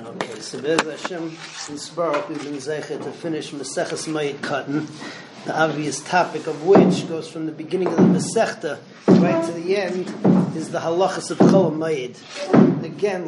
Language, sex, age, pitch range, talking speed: English, male, 40-59, 170-205 Hz, 155 wpm